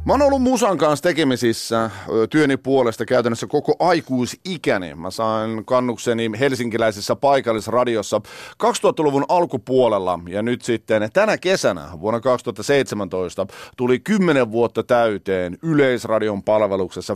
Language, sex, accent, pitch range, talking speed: Finnish, male, native, 110-145 Hz, 110 wpm